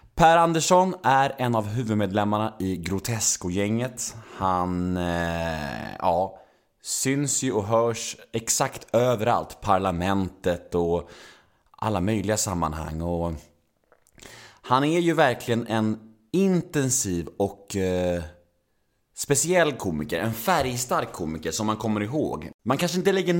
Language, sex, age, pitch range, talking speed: Swedish, male, 30-49, 105-145 Hz, 115 wpm